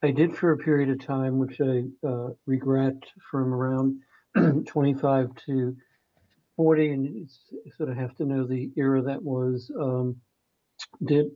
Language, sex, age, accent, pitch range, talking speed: English, male, 60-79, American, 130-145 Hz, 155 wpm